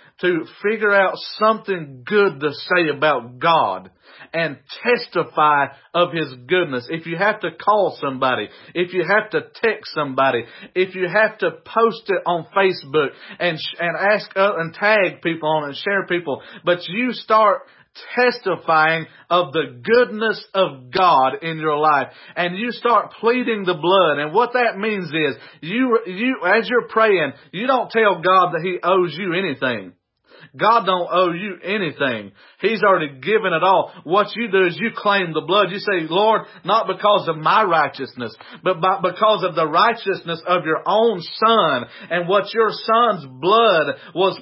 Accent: American